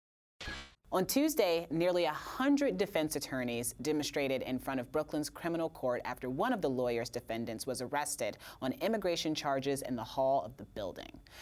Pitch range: 130-180 Hz